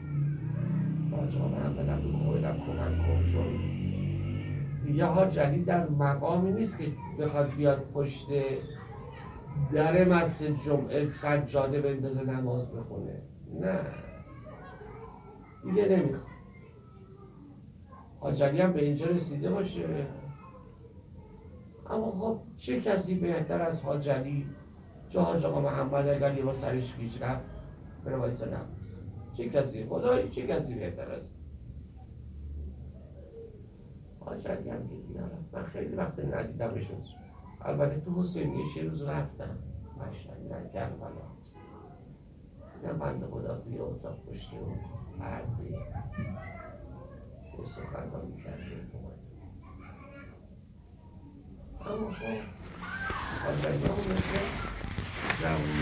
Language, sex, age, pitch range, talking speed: Persian, male, 60-79, 95-145 Hz, 80 wpm